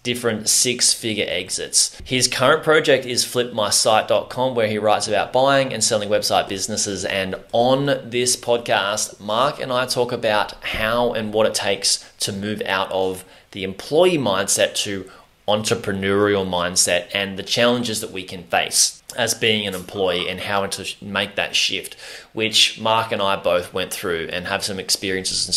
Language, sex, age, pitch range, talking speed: English, male, 20-39, 100-120 Hz, 165 wpm